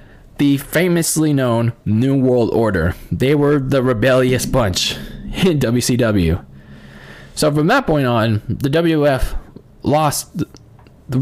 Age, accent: 20-39, American